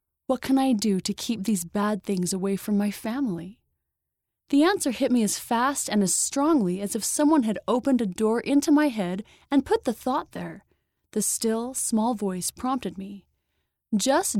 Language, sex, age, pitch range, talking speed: English, female, 30-49, 195-265 Hz, 185 wpm